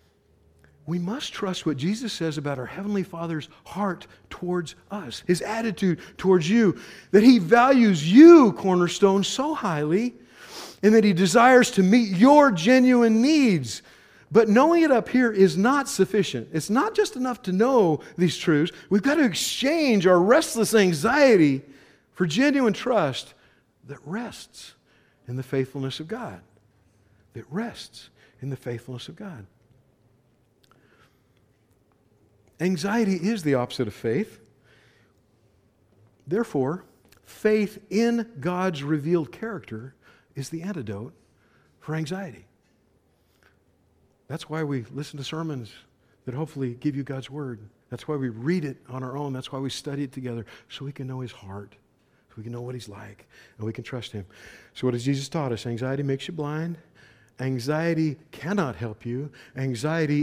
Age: 50-69